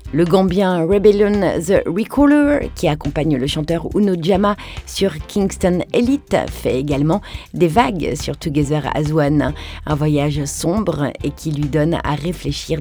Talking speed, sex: 145 wpm, female